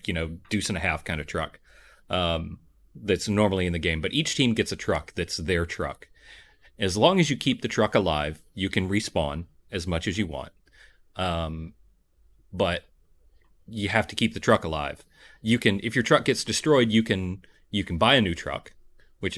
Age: 30-49